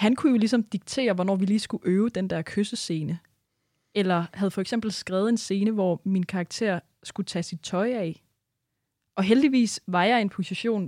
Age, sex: 20-39, female